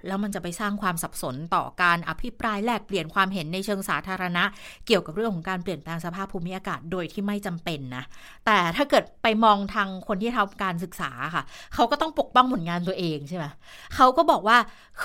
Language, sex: Thai, female